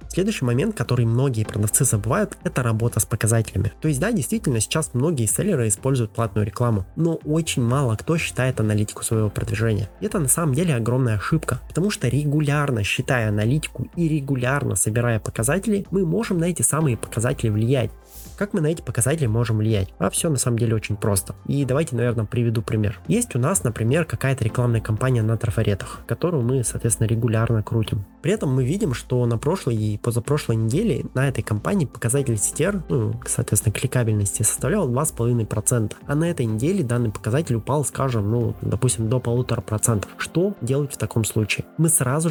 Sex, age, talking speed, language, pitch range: male, 20-39, 175 wpm, Russian, 115-150 Hz